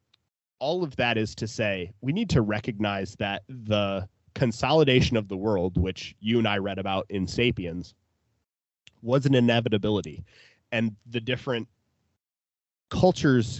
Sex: male